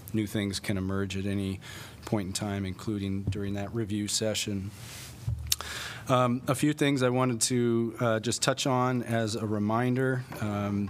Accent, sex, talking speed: American, male, 155 wpm